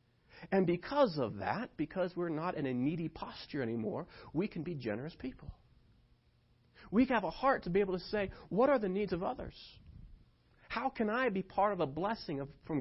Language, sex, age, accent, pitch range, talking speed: English, male, 40-59, American, 120-175 Hz, 190 wpm